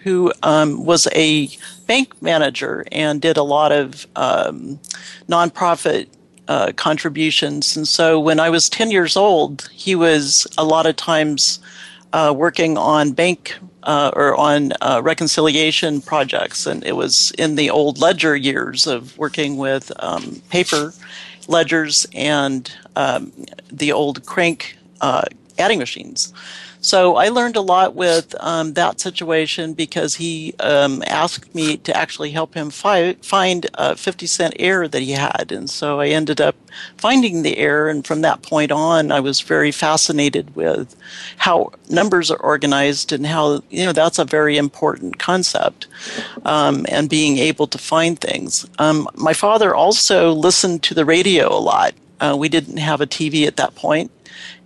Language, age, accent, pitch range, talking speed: English, 50-69, American, 150-170 Hz, 160 wpm